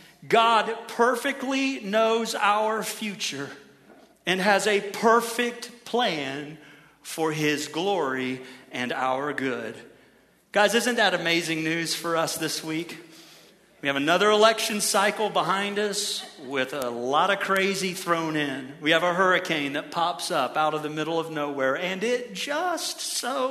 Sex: male